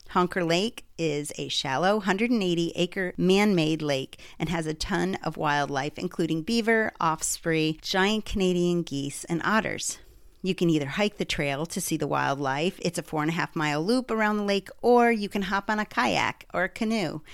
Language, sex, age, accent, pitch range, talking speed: English, female, 50-69, American, 150-200 Hz, 175 wpm